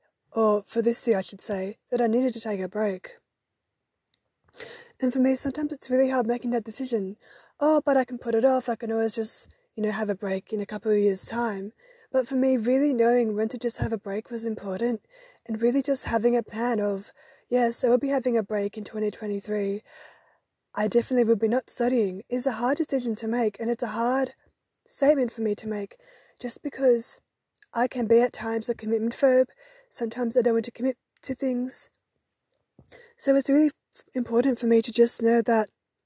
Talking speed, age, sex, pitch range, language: 205 wpm, 20-39, female, 220-255 Hz, English